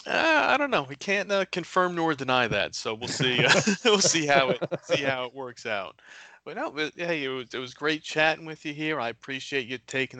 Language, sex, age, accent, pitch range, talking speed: English, male, 30-49, American, 120-135 Hz, 240 wpm